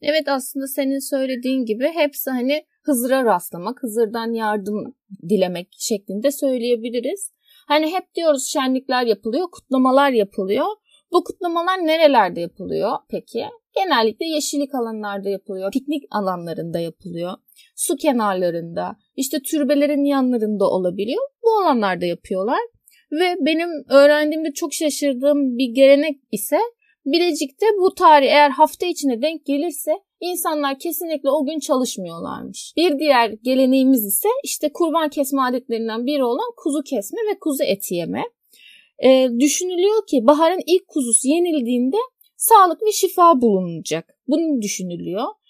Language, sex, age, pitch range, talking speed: Turkish, female, 30-49, 245-325 Hz, 120 wpm